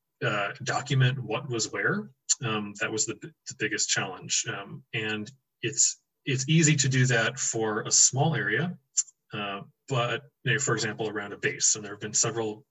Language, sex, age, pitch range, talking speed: English, male, 20-39, 115-140 Hz, 185 wpm